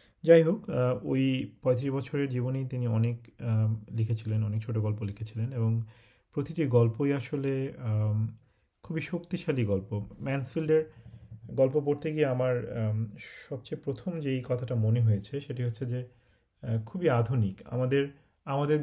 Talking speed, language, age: 125 wpm, Bengali, 40-59